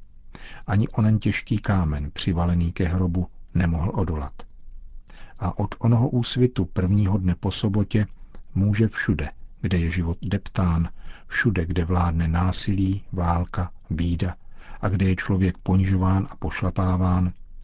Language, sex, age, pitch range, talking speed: Czech, male, 50-69, 85-100 Hz, 120 wpm